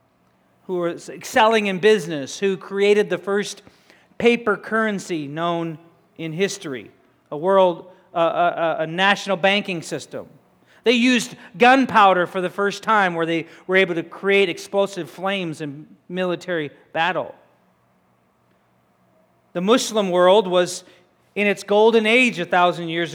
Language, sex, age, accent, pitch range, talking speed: English, male, 40-59, American, 170-215 Hz, 130 wpm